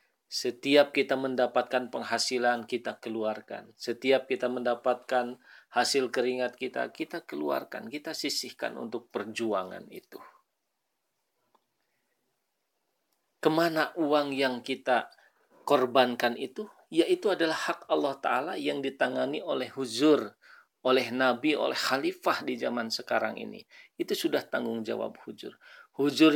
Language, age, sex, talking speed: Indonesian, 40-59, male, 110 wpm